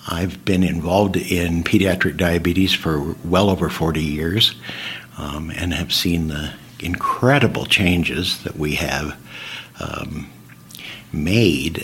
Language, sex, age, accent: English, male, 60-79, American